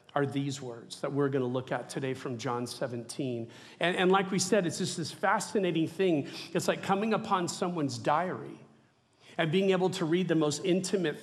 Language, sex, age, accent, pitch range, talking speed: English, male, 40-59, American, 135-180 Hz, 190 wpm